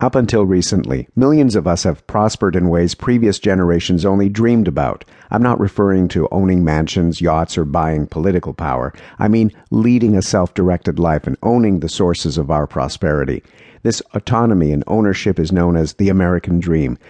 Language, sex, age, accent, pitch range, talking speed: English, male, 50-69, American, 85-110 Hz, 170 wpm